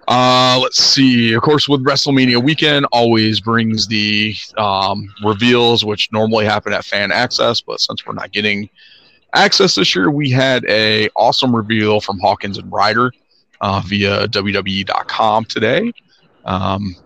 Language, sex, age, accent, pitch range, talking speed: English, male, 30-49, American, 100-115 Hz, 140 wpm